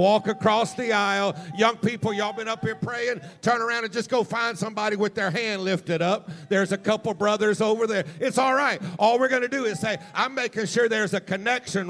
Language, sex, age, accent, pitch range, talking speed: English, male, 50-69, American, 185-225 Hz, 225 wpm